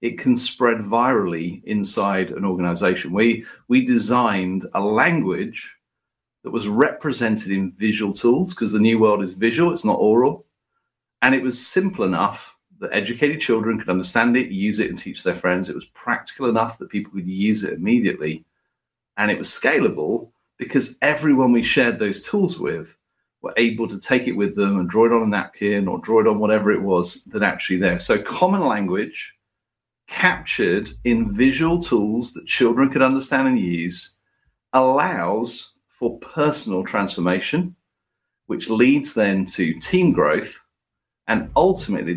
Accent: British